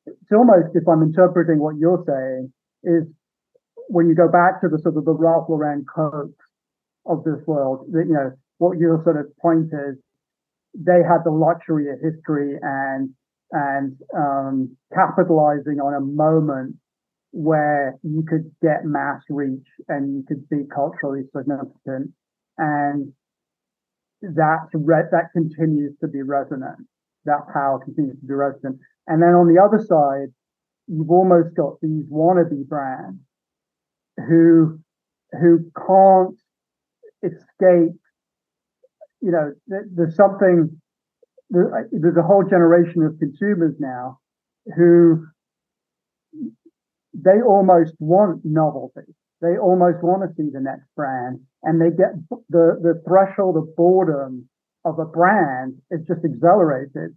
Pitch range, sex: 145-175 Hz, male